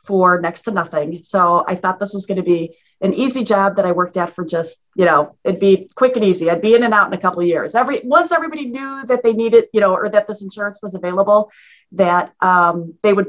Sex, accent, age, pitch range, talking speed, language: female, American, 30-49, 170-205 Hz, 260 wpm, English